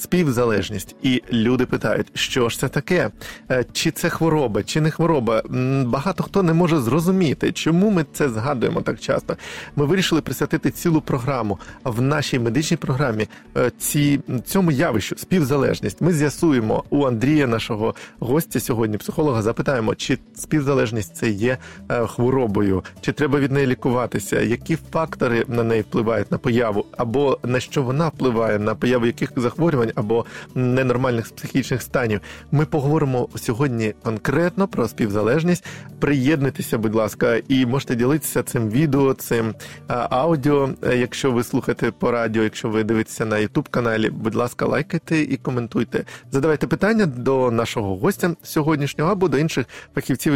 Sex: male